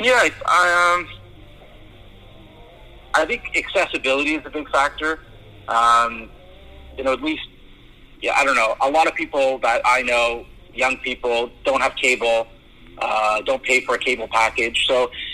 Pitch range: 120-155 Hz